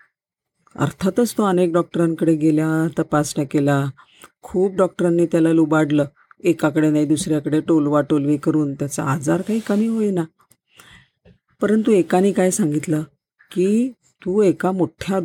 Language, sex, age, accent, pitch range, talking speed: Marathi, female, 40-59, native, 155-190 Hz, 120 wpm